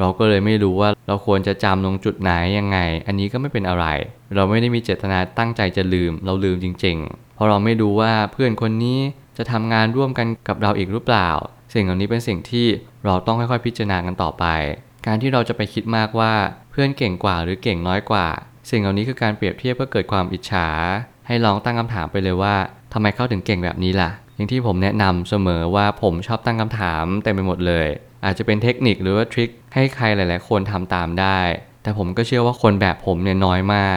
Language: Thai